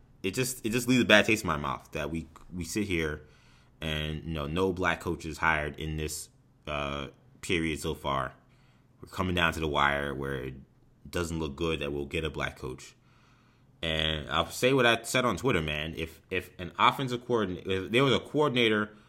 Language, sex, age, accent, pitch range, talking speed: English, male, 30-49, American, 85-125 Hz, 200 wpm